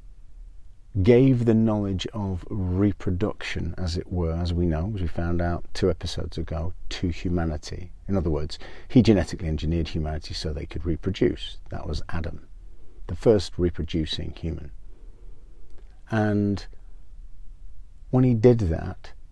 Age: 40-59